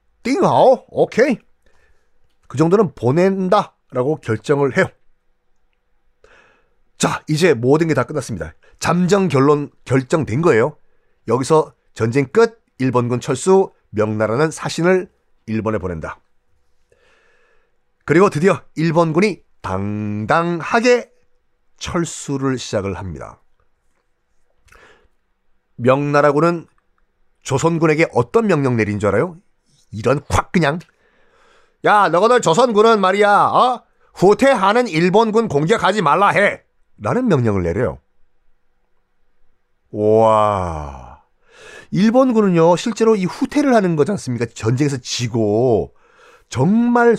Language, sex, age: Korean, male, 40-59